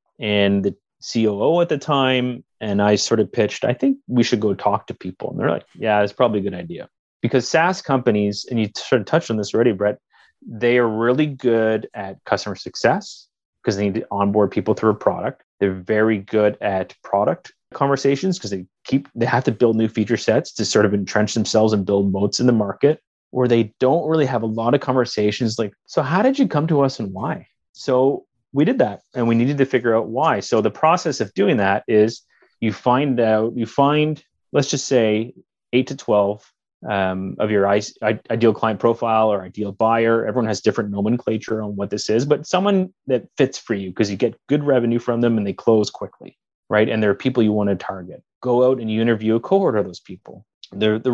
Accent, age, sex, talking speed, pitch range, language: American, 30-49, male, 215 wpm, 105-130 Hz, English